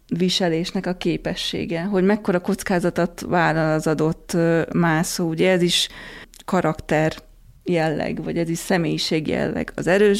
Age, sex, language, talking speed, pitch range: 30-49, female, Hungarian, 130 wpm, 165-210 Hz